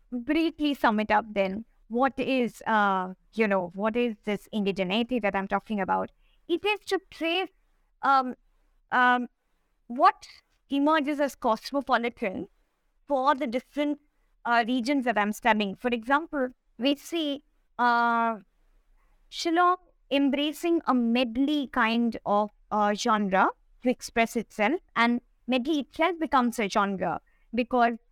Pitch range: 225-285 Hz